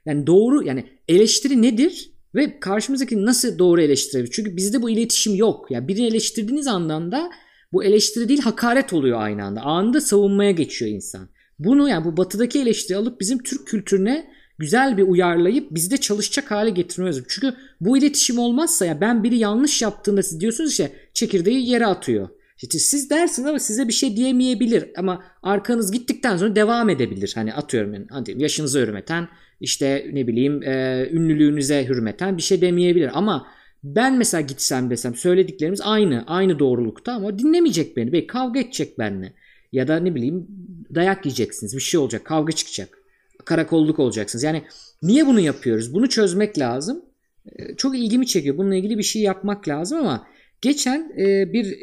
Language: Turkish